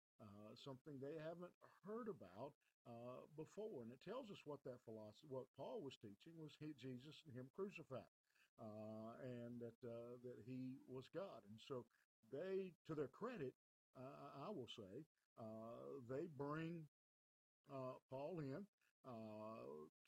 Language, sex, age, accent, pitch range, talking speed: English, male, 50-69, American, 120-155 Hz, 150 wpm